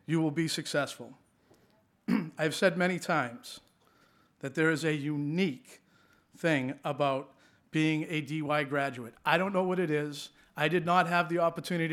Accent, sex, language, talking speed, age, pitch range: American, male, English, 155 wpm, 40-59, 135-165 Hz